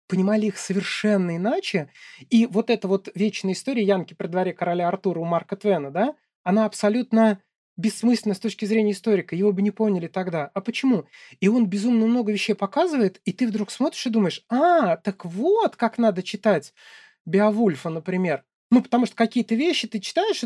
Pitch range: 200-250 Hz